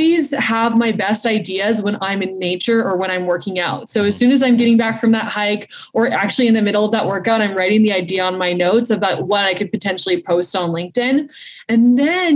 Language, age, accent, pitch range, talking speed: English, 20-39, American, 205-250 Hz, 235 wpm